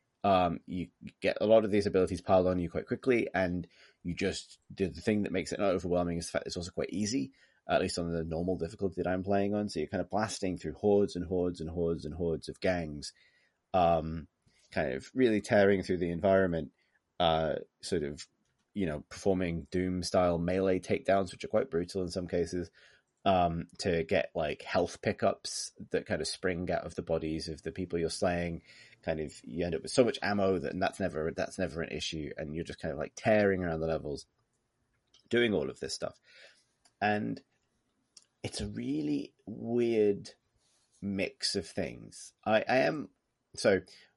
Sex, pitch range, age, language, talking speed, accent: male, 80-100 Hz, 30-49, English, 195 wpm, British